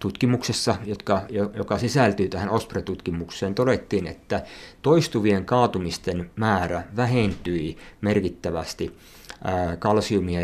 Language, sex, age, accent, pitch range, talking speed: Finnish, male, 50-69, native, 90-110 Hz, 85 wpm